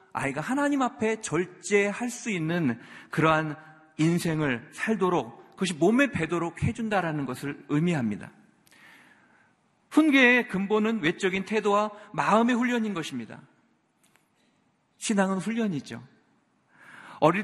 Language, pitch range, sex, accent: Korean, 135-205 Hz, male, native